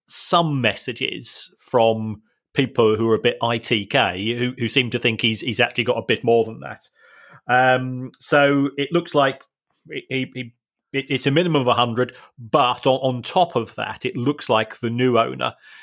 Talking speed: 190 wpm